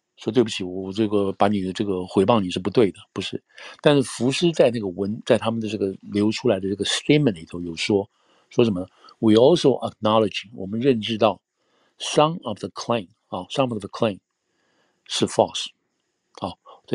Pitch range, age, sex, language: 100-120 Hz, 60-79, male, Chinese